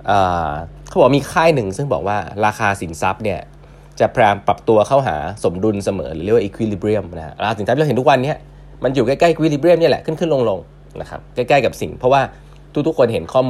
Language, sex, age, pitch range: Thai, male, 20-39, 100-145 Hz